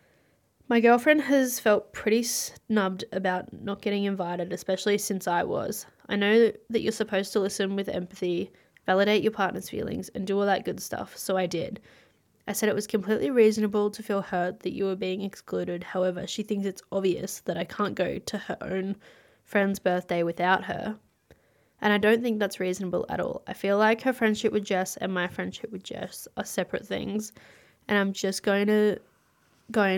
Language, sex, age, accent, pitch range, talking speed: English, female, 10-29, Australian, 180-215 Hz, 190 wpm